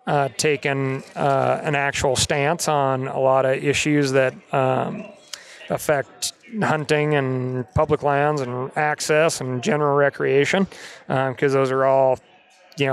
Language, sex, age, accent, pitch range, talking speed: English, male, 30-49, American, 135-155 Hz, 135 wpm